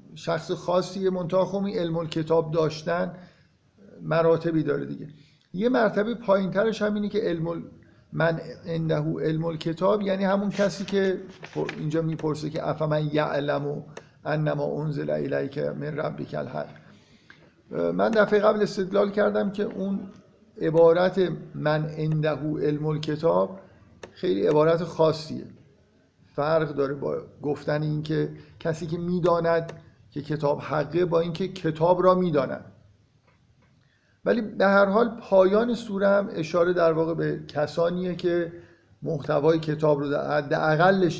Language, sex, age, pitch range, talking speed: Persian, male, 50-69, 150-185 Hz, 125 wpm